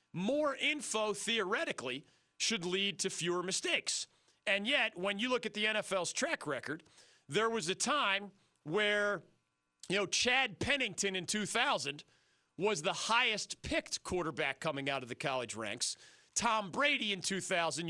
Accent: American